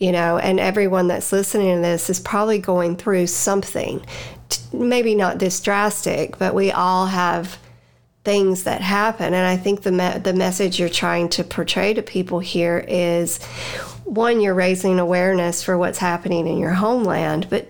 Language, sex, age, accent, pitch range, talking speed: English, female, 40-59, American, 175-200 Hz, 165 wpm